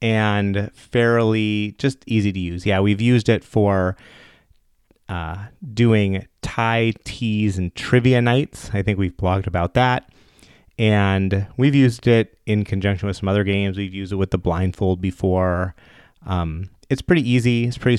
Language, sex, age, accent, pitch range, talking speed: English, male, 30-49, American, 95-120 Hz, 155 wpm